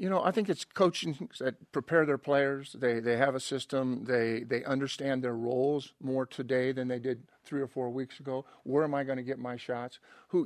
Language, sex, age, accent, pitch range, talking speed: English, male, 50-69, American, 120-150 Hz, 225 wpm